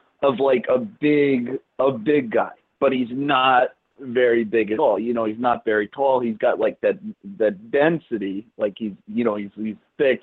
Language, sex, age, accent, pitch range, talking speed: English, male, 30-49, American, 125-165 Hz, 195 wpm